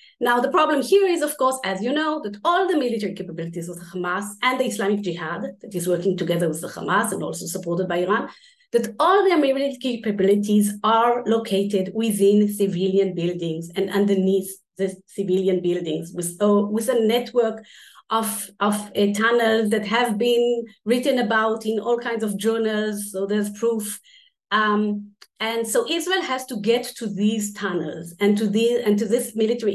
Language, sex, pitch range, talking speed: English, female, 195-245 Hz, 165 wpm